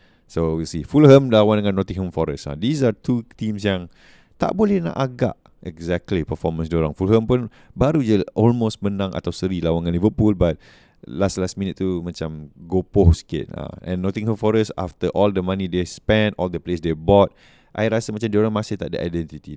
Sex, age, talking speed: male, 20-39, 185 wpm